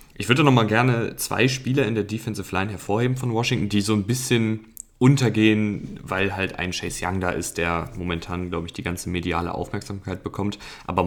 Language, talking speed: German, 190 wpm